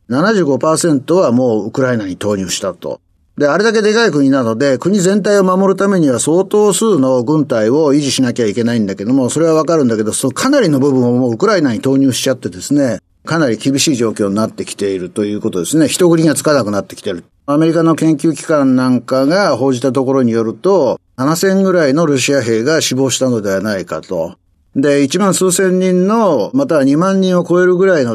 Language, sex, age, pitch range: Japanese, male, 50-69, 125-190 Hz